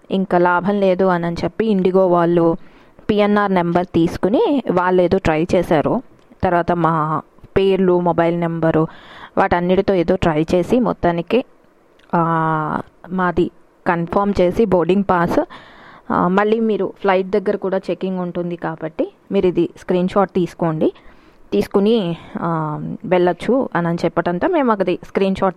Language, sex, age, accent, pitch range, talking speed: Telugu, female, 20-39, native, 175-220 Hz, 115 wpm